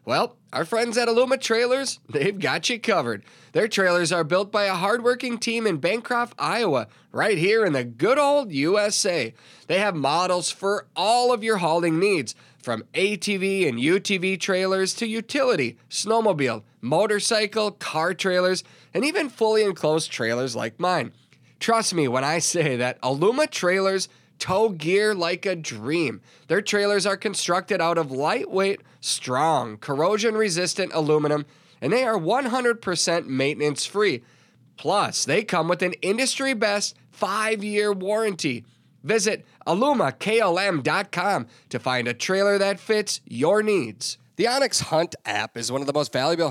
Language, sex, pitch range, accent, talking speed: English, male, 145-205 Hz, American, 150 wpm